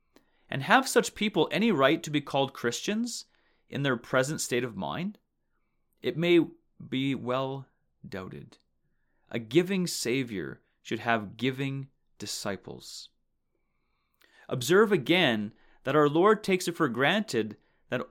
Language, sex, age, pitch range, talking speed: English, male, 30-49, 120-180 Hz, 125 wpm